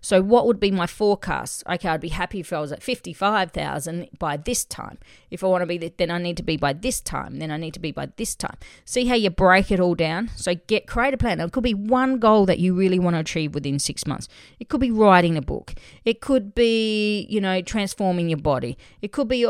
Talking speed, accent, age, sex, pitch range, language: 255 wpm, Australian, 40-59, female, 170-225 Hz, English